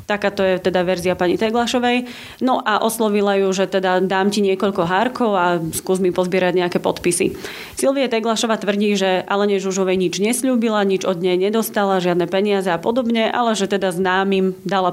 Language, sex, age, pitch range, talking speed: Slovak, female, 30-49, 190-220 Hz, 175 wpm